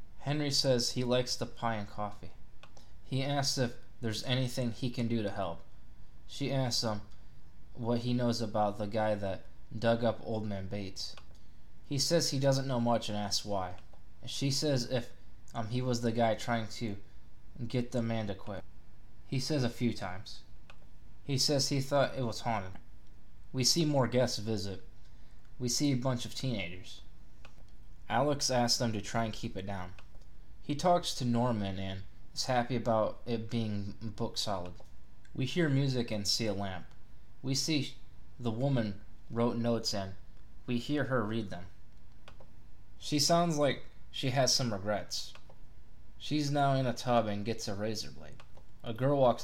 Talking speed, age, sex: 170 wpm, 20-39, male